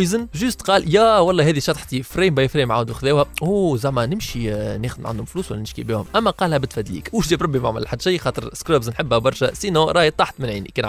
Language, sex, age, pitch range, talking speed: Arabic, male, 20-39, 125-190 Hz, 215 wpm